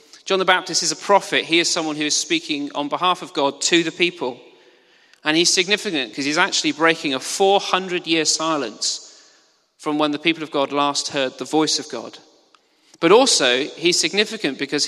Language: English